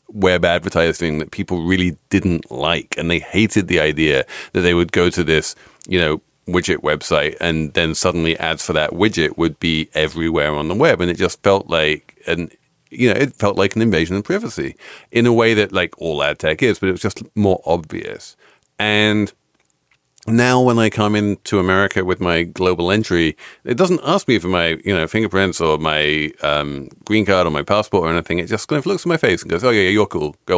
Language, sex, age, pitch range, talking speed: English, male, 40-59, 80-110 Hz, 220 wpm